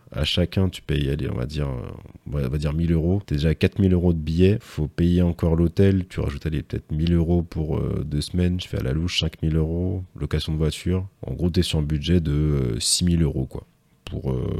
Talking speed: 235 wpm